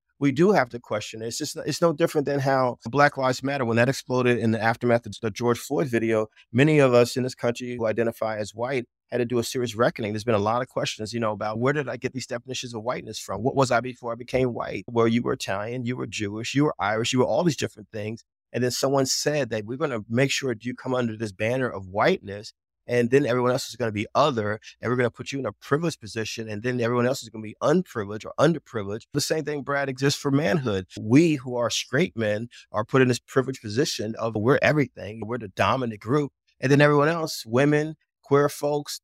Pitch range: 115-140 Hz